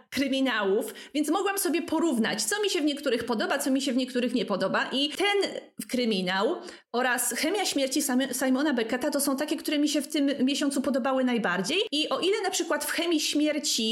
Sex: female